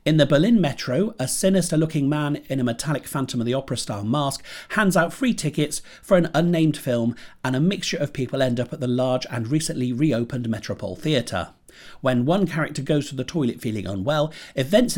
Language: English